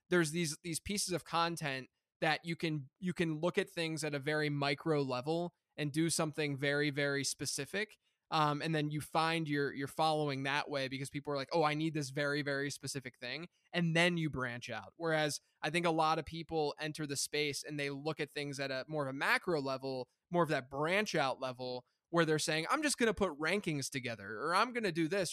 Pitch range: 140-170 Hz